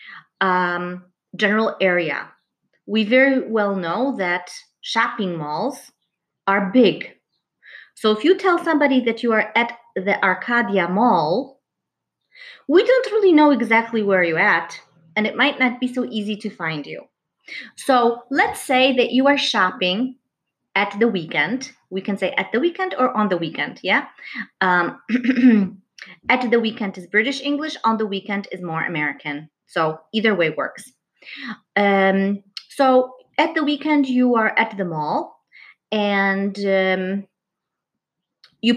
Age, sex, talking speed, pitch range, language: 30-49, female, 145 wpm, 195-270 Hz, English